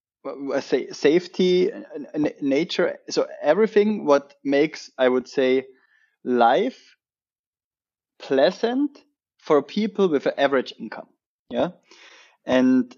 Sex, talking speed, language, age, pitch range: male, 90 wpm, English, 20-39, 135-205 Hz